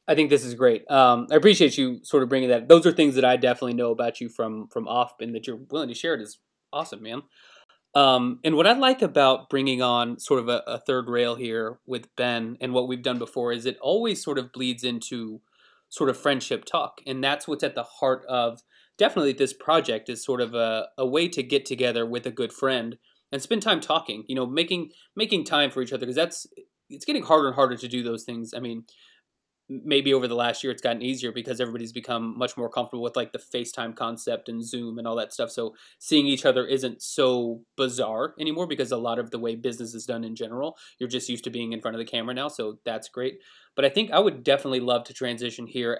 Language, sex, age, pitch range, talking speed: English, male, 20-39, 120-135 Hz, 240 wpm